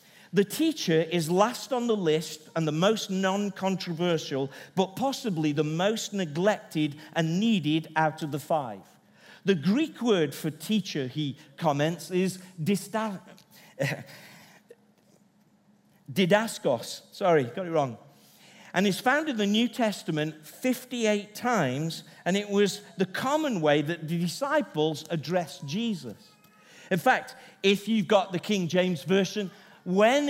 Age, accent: 50-69, British